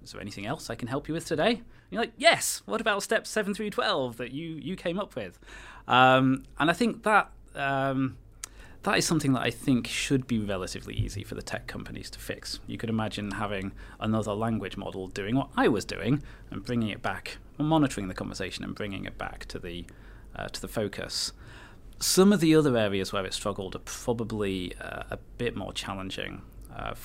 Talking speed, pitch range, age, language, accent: 210 wpm, 100-135 Hz, 30-49, English, British